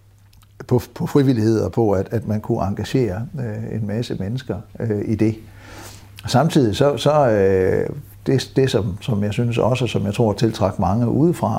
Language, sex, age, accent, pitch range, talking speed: Danish, male, 60-79, native, 105-125 Hz, 170 wpm